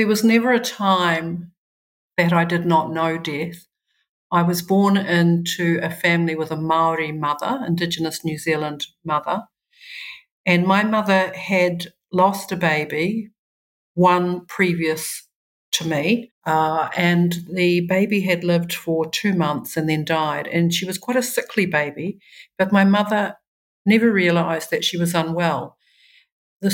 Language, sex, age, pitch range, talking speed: English, female, 50-69, 165-190 Hz, 145 wpm